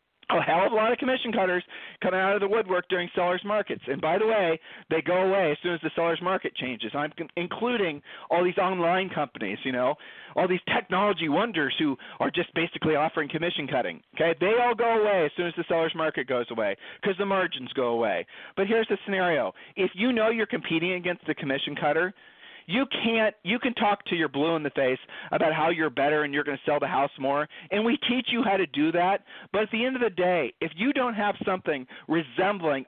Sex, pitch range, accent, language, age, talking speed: male, 160-215 Hz, American, English, 40-59, 225 wpm